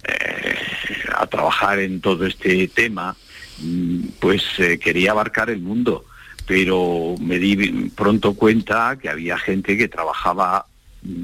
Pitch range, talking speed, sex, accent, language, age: 95-115 Hz, 110 wpm, male, Spanish, Spanish, 60-79